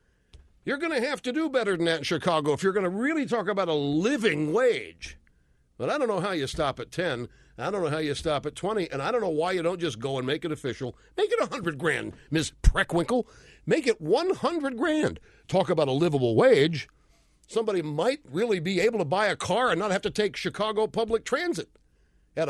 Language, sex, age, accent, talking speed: English, male, 60-79, American, 225 wpm